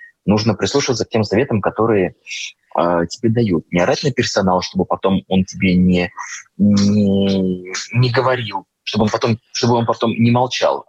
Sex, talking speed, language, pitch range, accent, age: male, 160 wpm, Russian, 95-125 Hz, native, 20-39